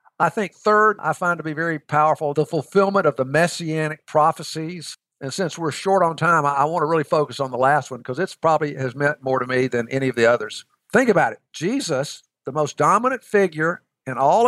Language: English